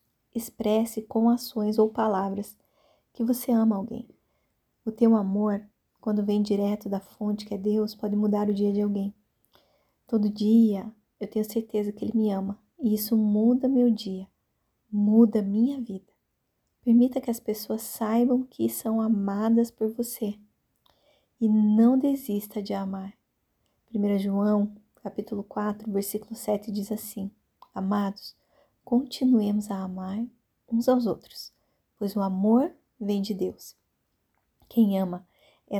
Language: Portuguese